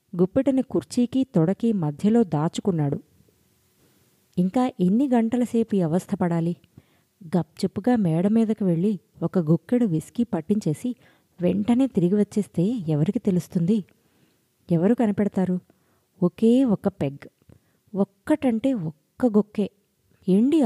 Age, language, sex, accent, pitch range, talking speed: 20-39, Telugu, female, native, 170-230 Hz, 90 wpm